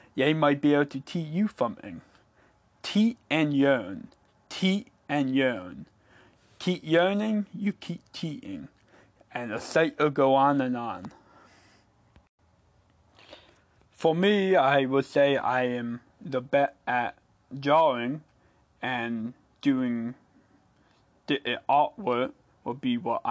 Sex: male